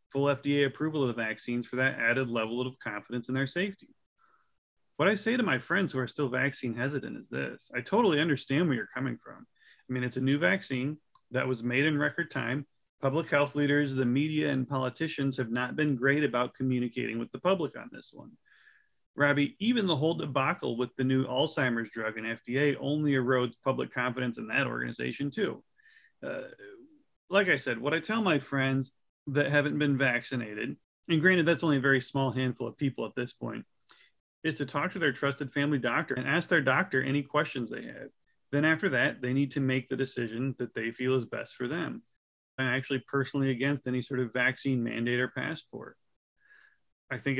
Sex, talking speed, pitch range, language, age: male, 200 wpm, 125-150 Hz, English, 30-49